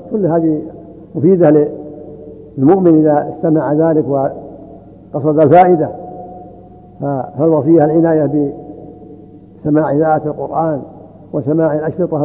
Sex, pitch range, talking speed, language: male, 150-170 Hz, 80 wpm, Arabic